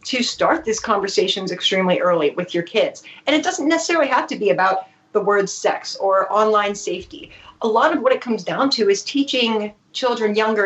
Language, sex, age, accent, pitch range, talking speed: English, female, 30-49, American, 190-240 Hz, 195 wpm